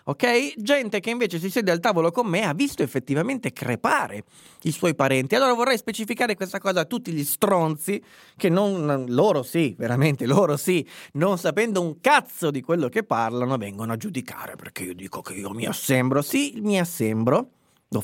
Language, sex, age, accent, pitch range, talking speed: Italian, male, 30-49, native, 125-195 Hz, 185 wpm